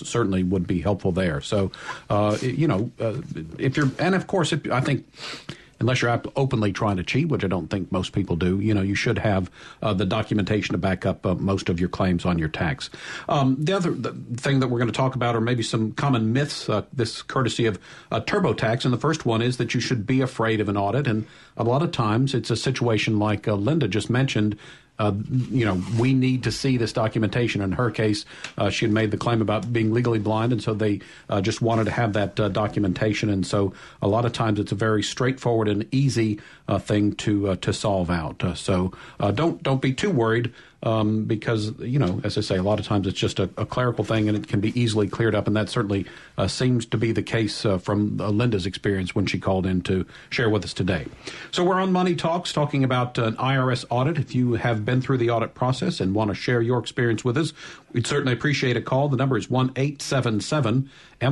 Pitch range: 105-135 Hz